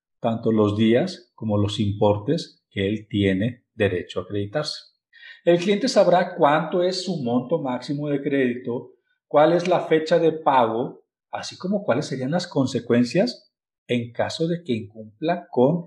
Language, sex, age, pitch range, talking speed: Spanish, male, 50-69, 125-170 Hz, 150 wpm